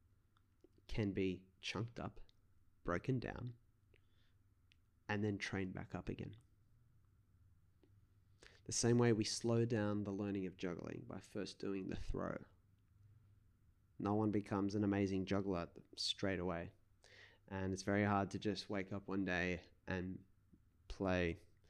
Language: English